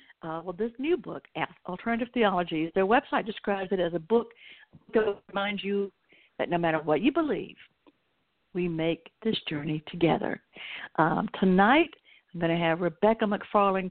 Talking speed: 155 wpm